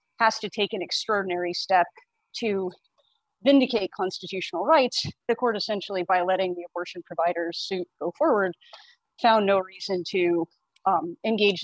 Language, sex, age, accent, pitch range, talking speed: English, female, 30-49, American, 185-250 Hz, 140 wpm